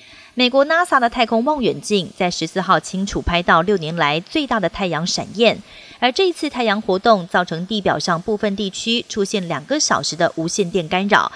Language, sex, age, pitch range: Chinese, female, 30-49, 180-245 Hz